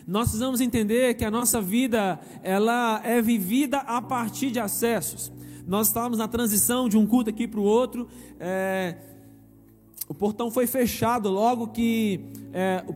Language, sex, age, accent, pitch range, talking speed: Portuguese, male, 20-39, Brazilian, 210-245 Hz, 145 wpm